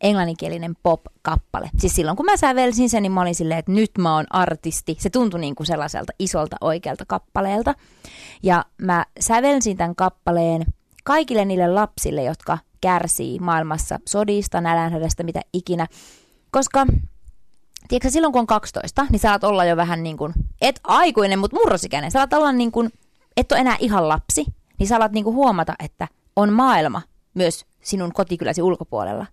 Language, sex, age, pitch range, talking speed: Finnish, female, 20-39, 170-220 Hz, 160 wpm